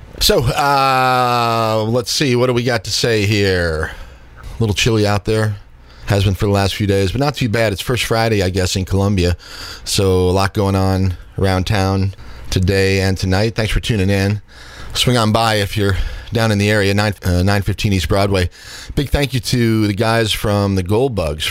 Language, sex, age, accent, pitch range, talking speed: English, male, 40-59, American, 90-110 Hz, 205 wpm